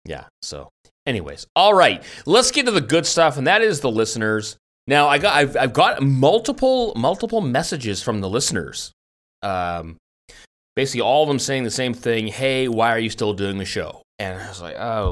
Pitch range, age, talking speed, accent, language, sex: 95-140 Hz, 30-49, 200 wpm, American, English, male